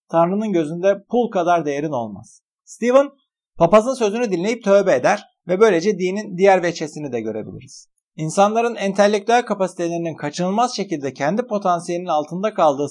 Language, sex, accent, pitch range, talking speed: Turkish, male, native, 155-205 Hz, 130 wpm